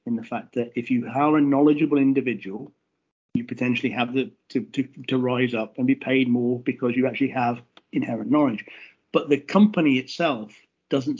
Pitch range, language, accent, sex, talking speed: 125-155 Hz, English, British, male, 175 wpm